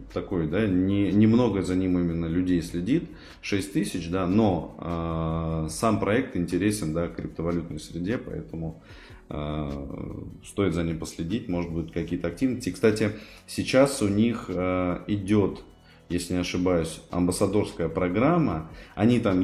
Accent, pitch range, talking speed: native, 80-100 Hz, 130 wpm